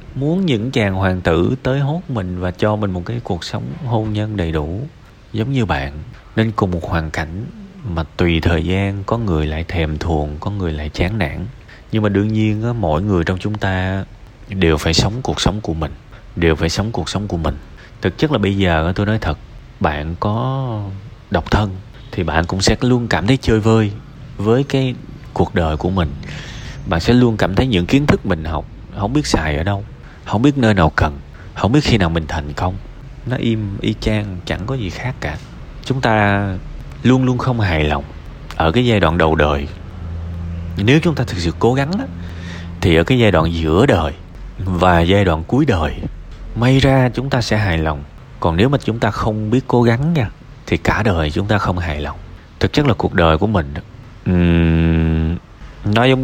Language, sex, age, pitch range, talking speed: Vietnamese, male, 30-49, 85-115 Hz, 205 wpm